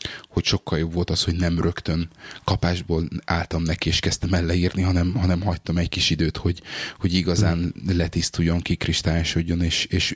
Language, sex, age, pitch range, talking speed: Hungarian, male, 30-49, 85-95 Hz, 165 wpm